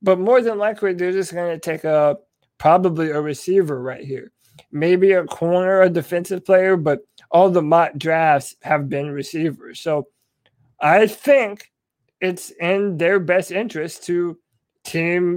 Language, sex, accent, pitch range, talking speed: English, male, American, 160-210 Hz, 150 wpm